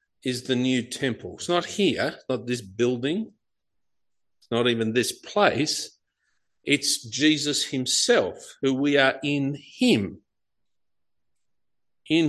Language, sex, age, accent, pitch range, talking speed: English, male, 50-69, Australian, 115-175 Hz, 110 wpm